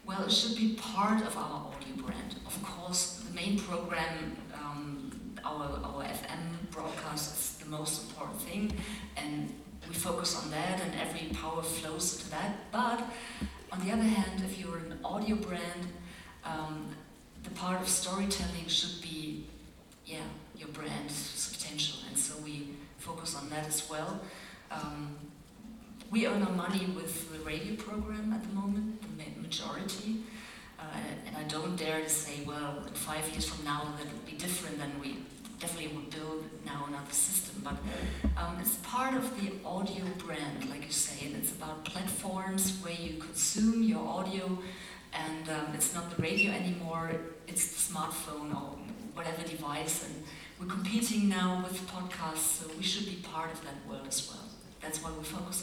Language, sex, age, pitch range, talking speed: French, female, 40-59, 155-200 Hz, 165 wpm